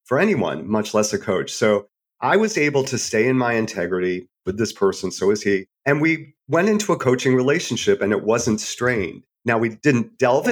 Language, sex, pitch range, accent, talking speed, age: English, male, 95-130 Hz, American, 205 wpm, 40-59